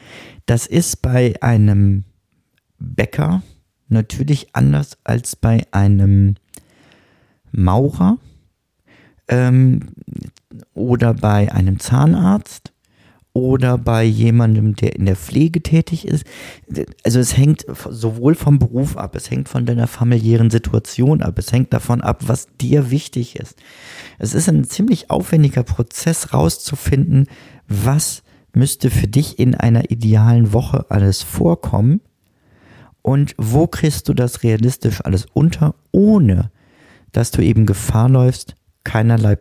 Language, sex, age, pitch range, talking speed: German, male, 40-59, 105-135 Hz, 120 wpm